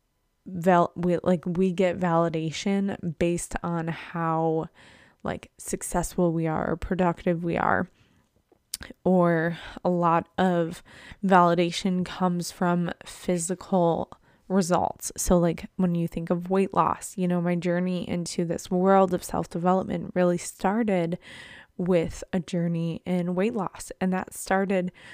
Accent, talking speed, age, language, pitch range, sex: American, 130 wpm, 20-39, English, 175-190 Hz, female